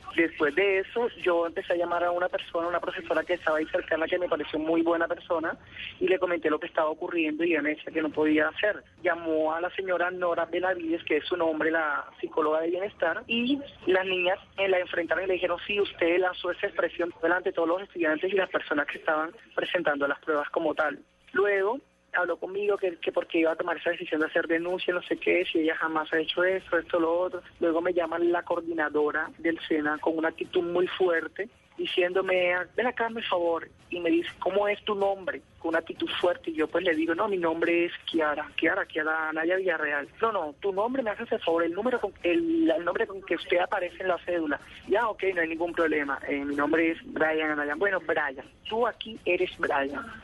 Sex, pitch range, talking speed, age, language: male, 165-190 Hz, 220 wpm, 30-49, Spanish